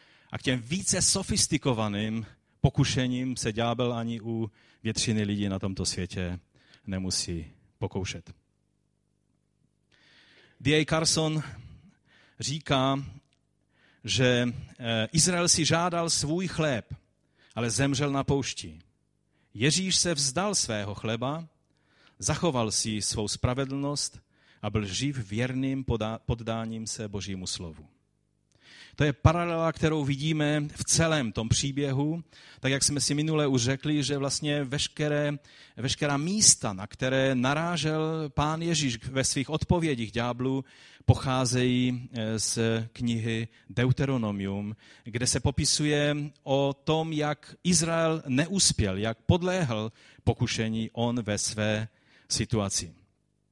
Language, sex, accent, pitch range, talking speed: Czech, male, native, 110-150 Hz, 105 wpm